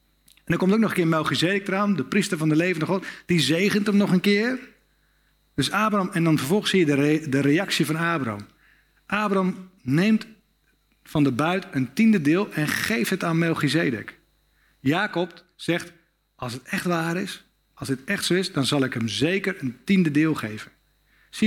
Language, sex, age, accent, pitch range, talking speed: Dutch, male, 50-69, Dutch, 150-195 Hz, 195 wpm